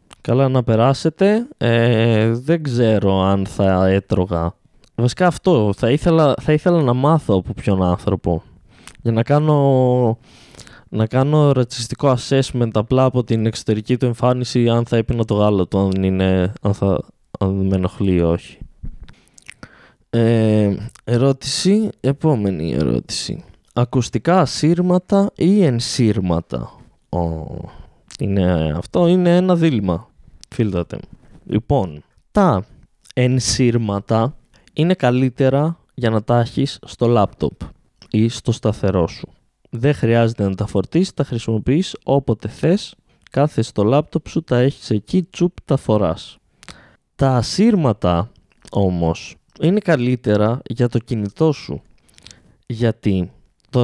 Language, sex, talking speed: Greek, male, 115 wpm